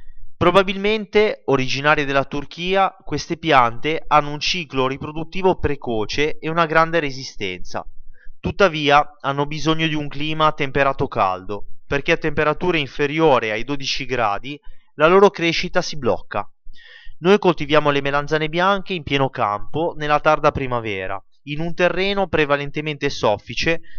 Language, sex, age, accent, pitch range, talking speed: Italian, male, 20-39, native, 125-160 Hz, 130 wpm